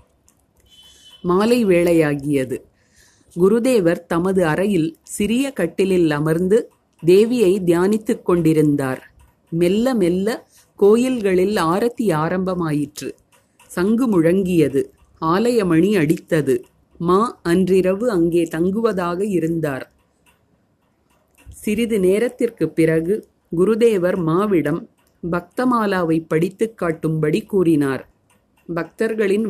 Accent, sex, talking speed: native, female, 75 wpm